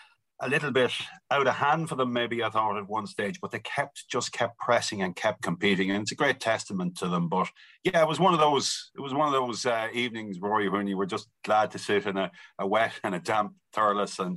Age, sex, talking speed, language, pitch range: 40-59, male, 255 wpm, English, 100-140 Hz